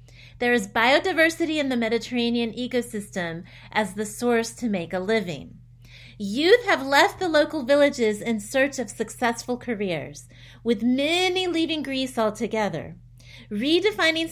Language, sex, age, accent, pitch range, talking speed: English, female, 30-49, American, 195-285 Hz, 130 wpm